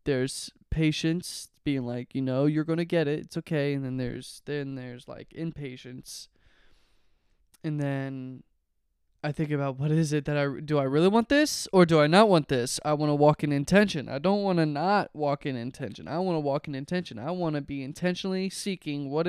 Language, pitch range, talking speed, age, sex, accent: English, 130-165 Hz, 210 wpm, 20-39, male, American